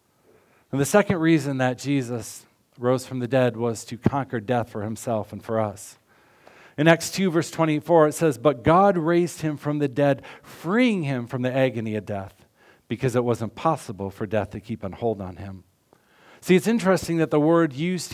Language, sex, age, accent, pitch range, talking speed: English, male, 50-69, American, 120-165 Hz, 195 wpm